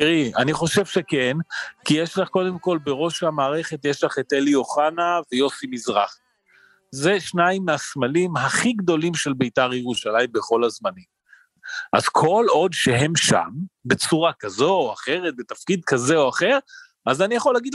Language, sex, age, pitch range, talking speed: Hebrew, male, 40-59, 140-190 Hz, 150 wpm